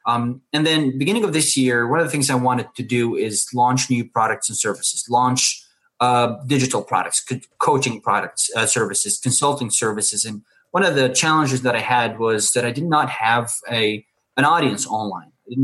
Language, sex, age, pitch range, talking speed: English, male, 20-39, 110-135 Hz, 200 wpm